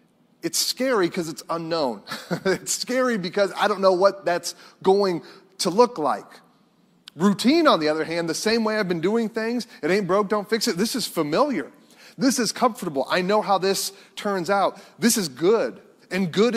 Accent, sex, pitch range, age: American, male, 165-210 Hz, 30-49